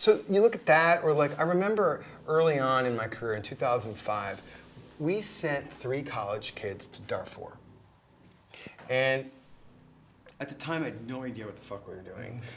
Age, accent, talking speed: 30-49, American, 175 wpm